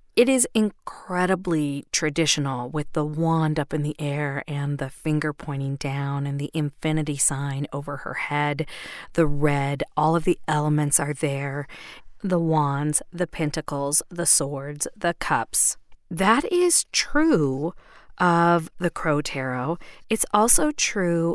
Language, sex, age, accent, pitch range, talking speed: English, female, 40-59, American, 145-195 Hz, 140 wpm